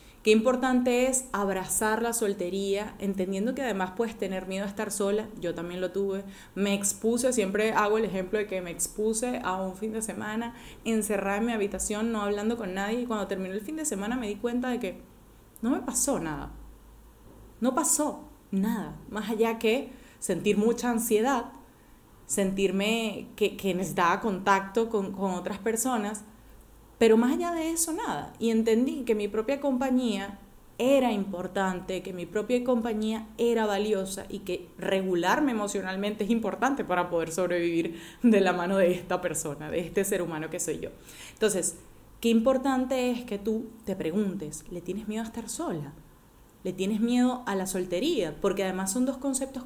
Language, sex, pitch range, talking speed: Spanish, female, 190-235 Hz, 175 wpm